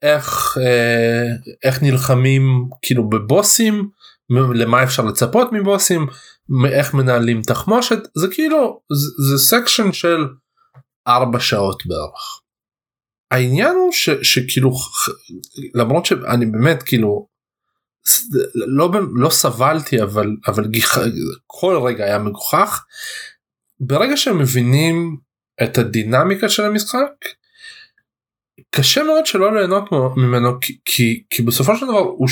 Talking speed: 105 wpm